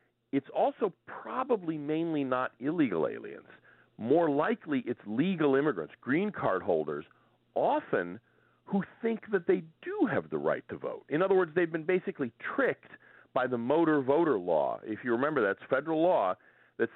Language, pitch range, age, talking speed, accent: English, 115-190 Hz, 40-59, 160 wpm, American